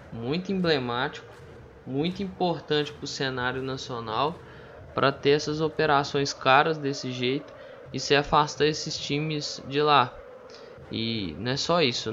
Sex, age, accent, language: male, 10-29, Brazilian, Portuguese